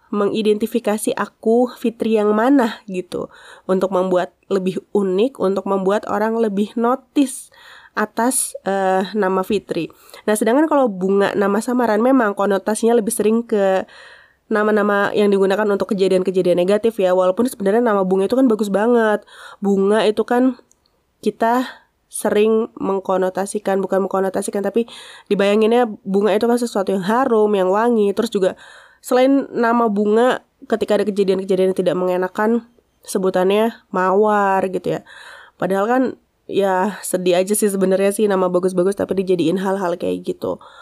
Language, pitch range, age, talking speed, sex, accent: Indonesian, 195-235 Hz, 20-39, 135 wpm, female, native